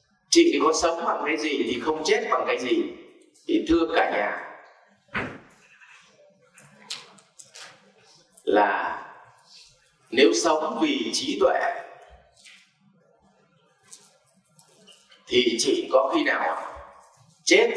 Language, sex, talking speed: Vietnamese, male, 95 wpm